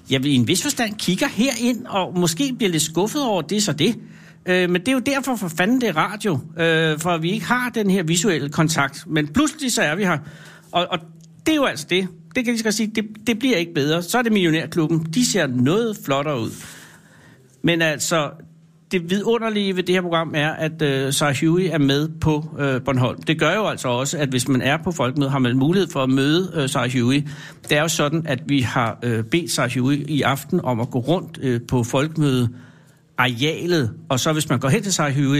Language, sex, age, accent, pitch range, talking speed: Danish, male, 60-79, native, 135-180 Hz, 225 wpm